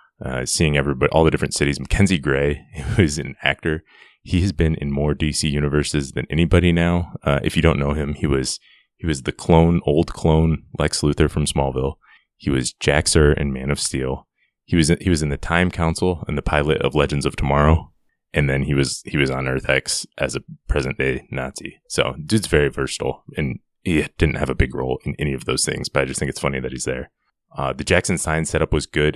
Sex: male